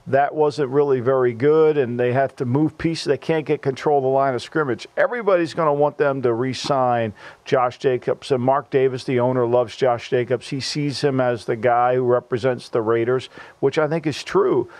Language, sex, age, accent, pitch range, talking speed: English, male, 50-69, American, 130-160 Hz, 210 wpm